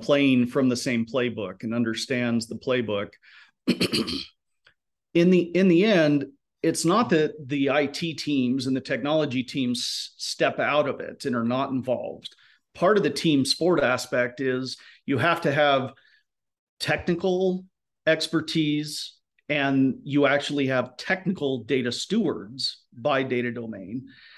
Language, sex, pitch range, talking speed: English, male, 125-165 Hz, 135 wpm